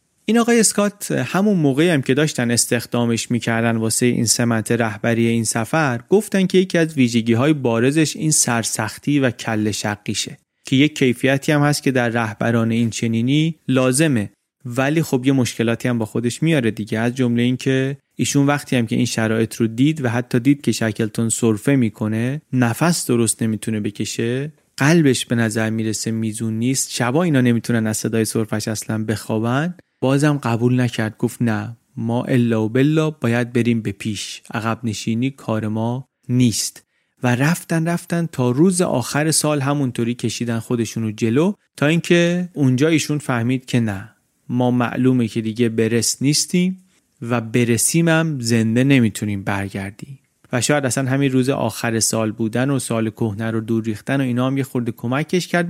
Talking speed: 165 wpm